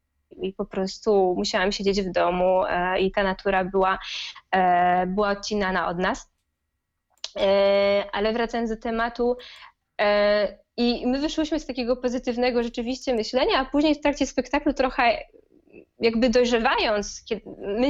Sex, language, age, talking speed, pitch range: female, Polish, 20-39, 135 wpm, 200-230 Hz